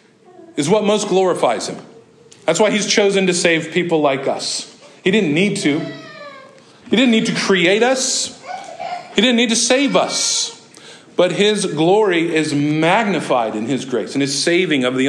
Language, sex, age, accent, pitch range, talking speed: English, male, 50-69, American, 150-210 Hz, 170 wpm